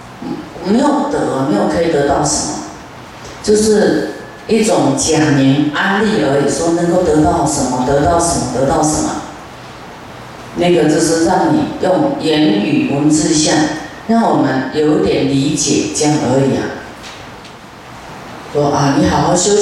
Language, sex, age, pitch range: Chinese, female, 40-59, 145-195 Hz